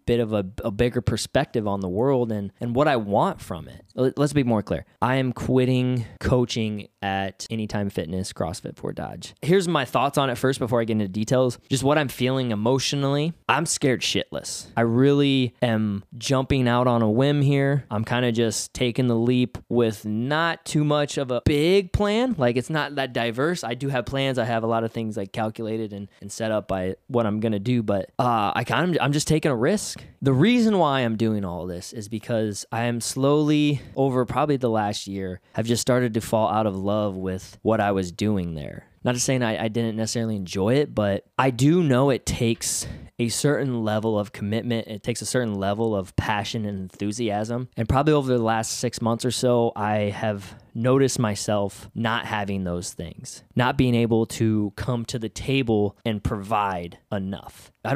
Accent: American